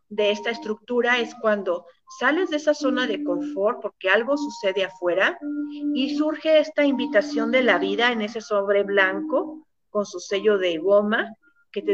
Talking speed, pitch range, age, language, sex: 165 wpm, 205-290 Hz, 50-69, Spanish, female